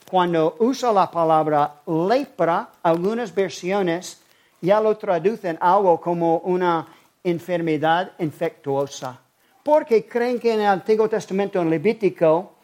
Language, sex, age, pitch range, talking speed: English, male, 50-69, 155-185 Hz, 115 wpm